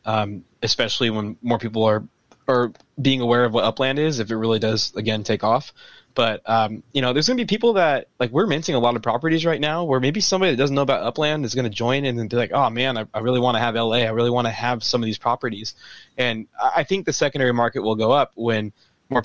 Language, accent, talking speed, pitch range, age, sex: English, American, 265 wpm, 110-130 Hz, 20-39, male